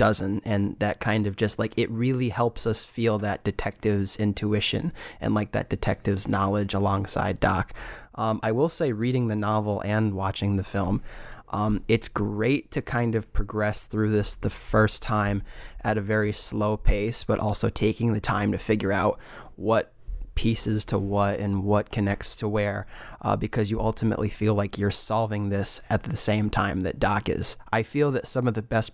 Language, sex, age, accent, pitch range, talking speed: English, male, 20-39, American, 105-115 Hz, 185 wpm